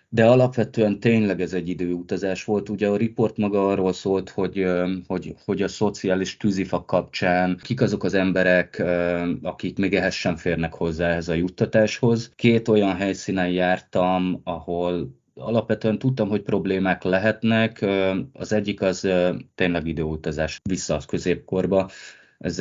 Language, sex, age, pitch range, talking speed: Hungarian, male, 20-39, 85-100 Hz, 140 wpm